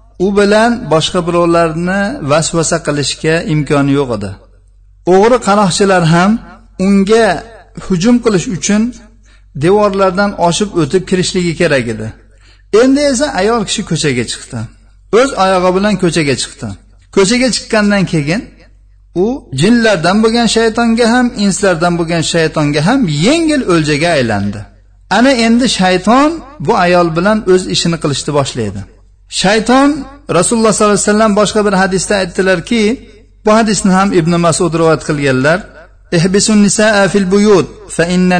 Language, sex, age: Russian, male, 50-69